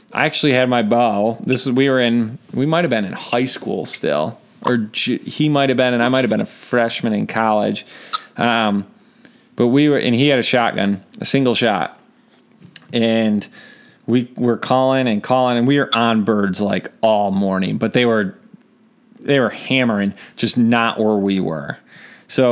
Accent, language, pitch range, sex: American, English, 110-130 Hz, male